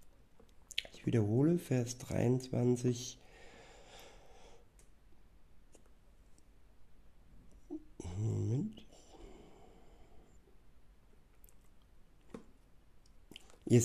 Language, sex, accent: German, male, German